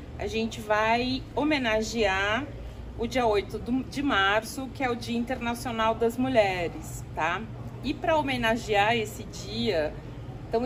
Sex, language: female, Portuguese